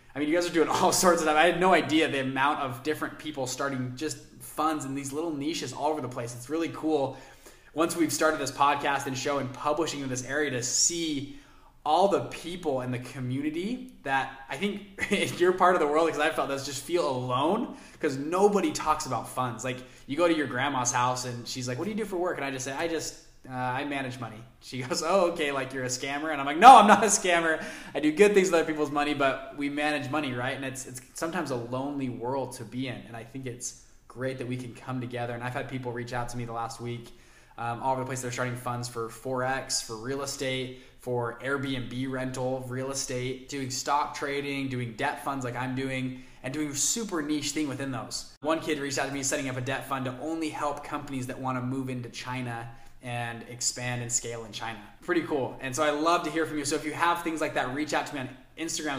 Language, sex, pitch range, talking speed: English, male, 125-155 Hz, 245 wpm